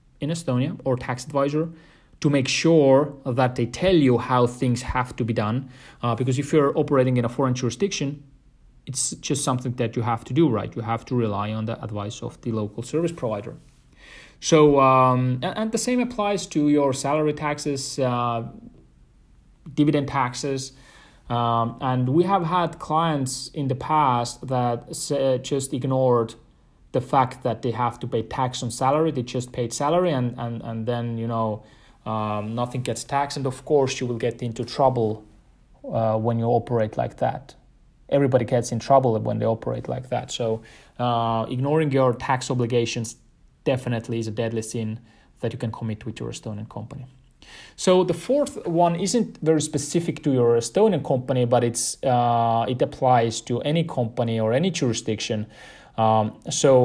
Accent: Finnish